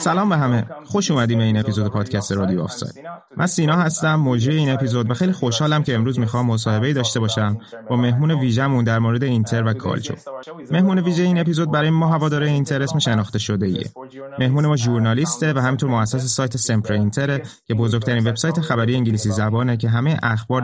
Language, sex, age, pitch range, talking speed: Persian, male, 30-49, 115-145 Hz, 185 wpm